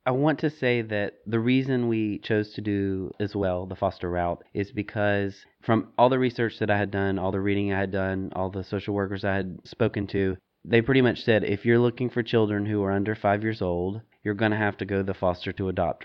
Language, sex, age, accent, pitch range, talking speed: English, male, 30-49, American, 100-120 Hz, 245 wpm